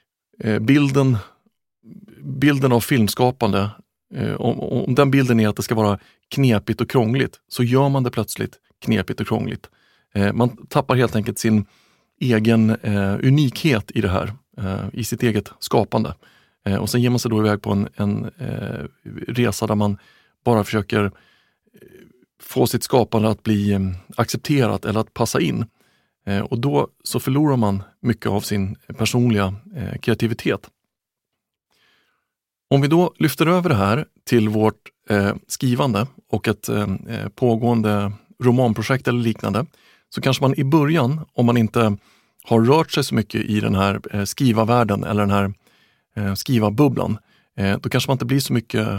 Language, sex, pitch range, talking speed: Swedish, male, 105-125 Hz, 140 wpm